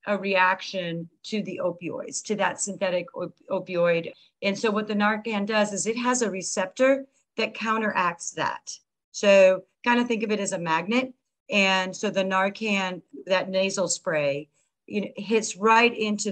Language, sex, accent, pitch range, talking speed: English, female, American, 180-220 Hz, 165 wpm